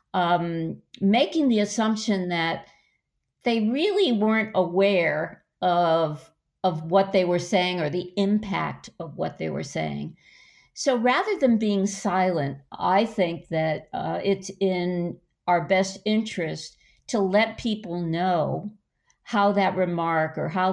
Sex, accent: female, American